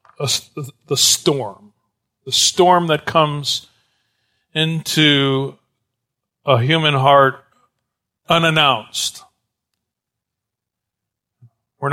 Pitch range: 130-150 Hz